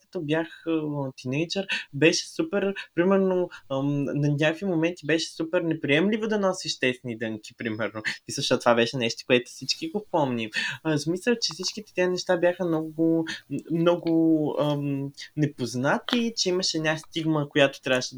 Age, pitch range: 20-39, 145-195 Hz